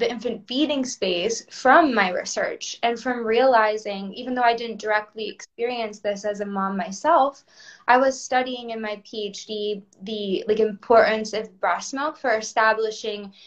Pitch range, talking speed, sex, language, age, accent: 200-240 Hz, 155 wpm, female, English, 20-39, American